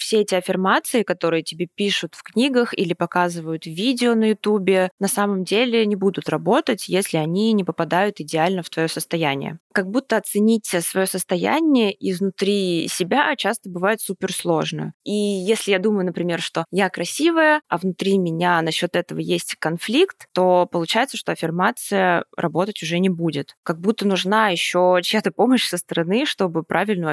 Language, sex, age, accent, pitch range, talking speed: Russian, female, 20-39, native, 165-200 Hz, 155 wpm